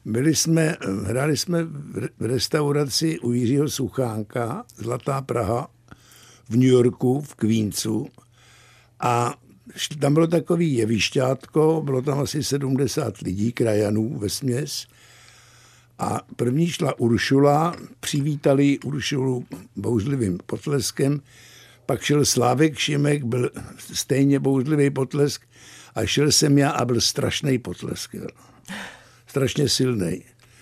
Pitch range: 120-155 Hz